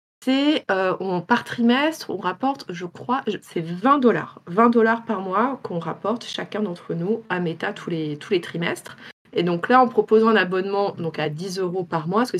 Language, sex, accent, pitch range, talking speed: French, female, French, 175-220 Hz, 215 wpm